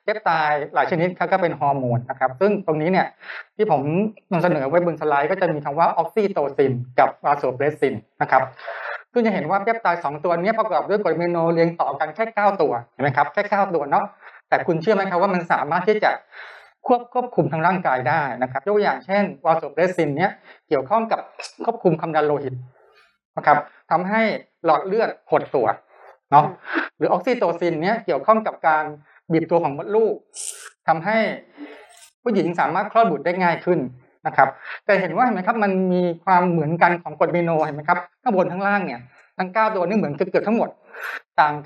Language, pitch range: Thai, 160-210 Hz